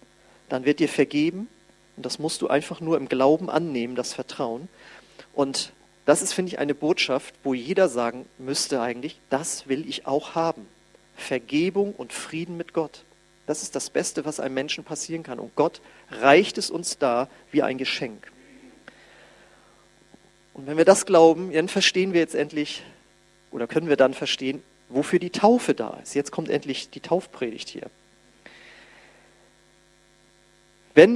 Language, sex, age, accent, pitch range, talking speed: German, male, 40-59, German, 140-185 Hz, 160 wpm